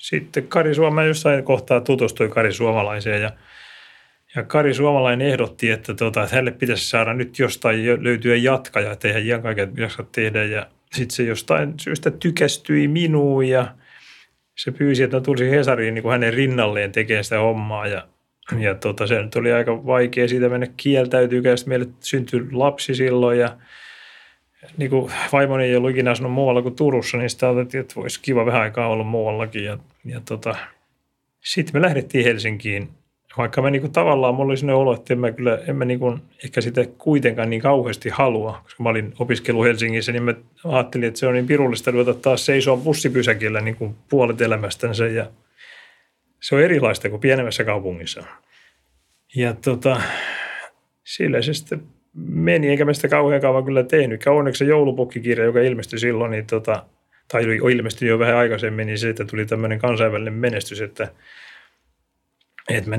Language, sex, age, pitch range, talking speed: Finnish, male, 30-49, 110-130 Hz, 160 wpm